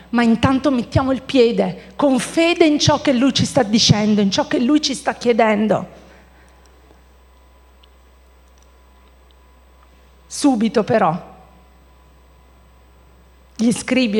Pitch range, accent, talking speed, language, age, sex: 195-255 Hz, native, 105 wpm, Italian, 40-59, female